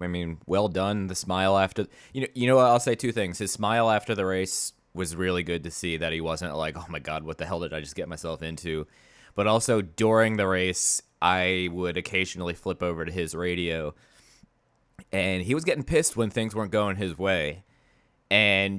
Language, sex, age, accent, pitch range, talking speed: English, male, 20-39, American, 85-110 Hz, 210 wpm